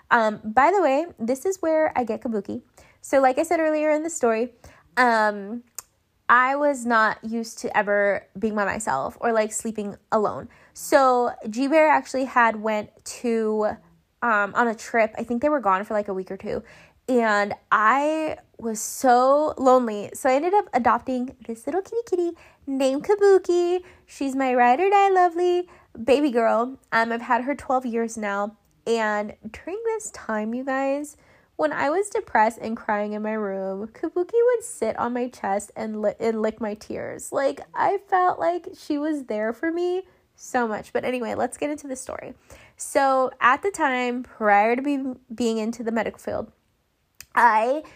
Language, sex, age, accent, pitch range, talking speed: English, female, 20-39, American, 220-295 Hz, 175 wpm